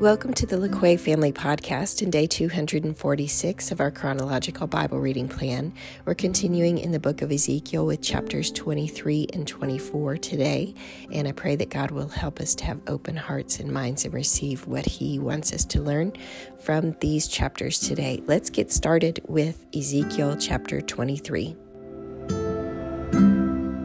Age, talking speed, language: 40-59, 155 wpm, English